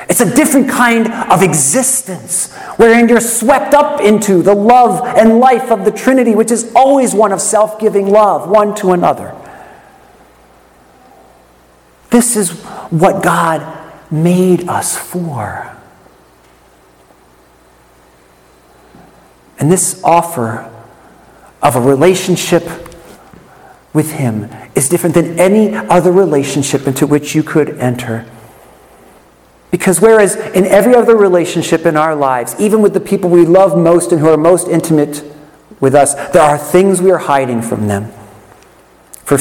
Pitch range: 140-205 Hz